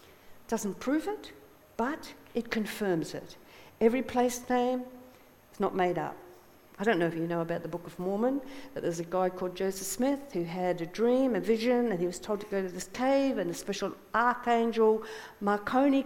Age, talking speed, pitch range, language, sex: 50-69, 195 wpm, 185-250 Hz, English, female